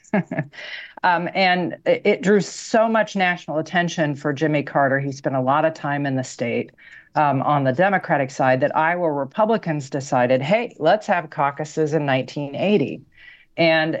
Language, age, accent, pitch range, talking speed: English, 40-59, American, 135-175 Hz, 160 wpm